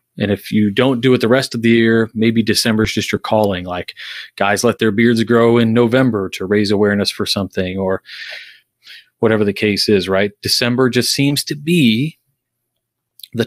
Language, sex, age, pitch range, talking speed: English, male, 30-49, 105-125 Hz, 185 wpm